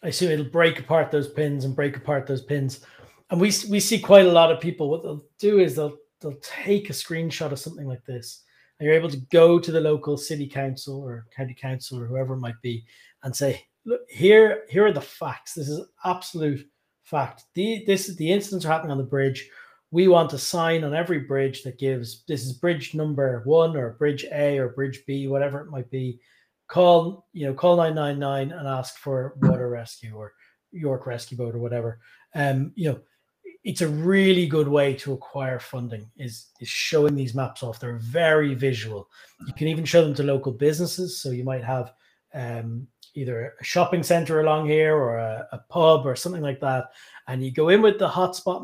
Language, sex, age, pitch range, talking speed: English, male, 30-49, 130-165 Hz, 210 wpm